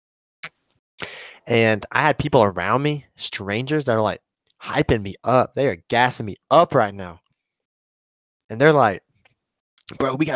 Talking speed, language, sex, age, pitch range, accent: 150 wpm, English, male, 20-39, 105-135 Hz, American